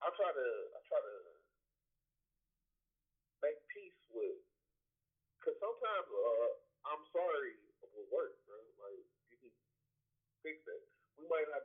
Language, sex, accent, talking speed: English, male, American, 130 wpm